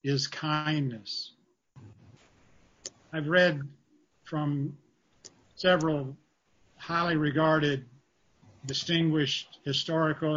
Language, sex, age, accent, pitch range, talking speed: English, male, 50-69, American, 135-165 Hz, 60 wpm